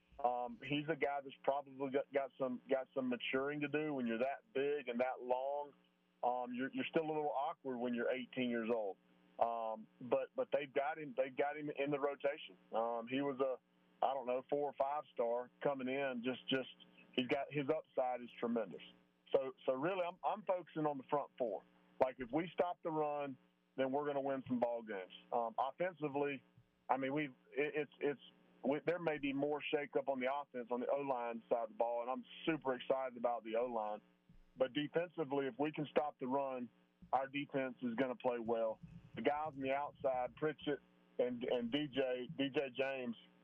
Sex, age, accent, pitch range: male, 40-59, American, 120-145 Hz